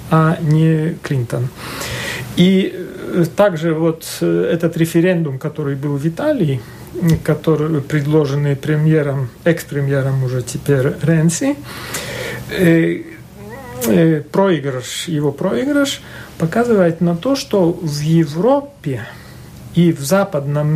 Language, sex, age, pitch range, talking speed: Russian, male, 40-59, 160-195 Hz, 90 wpm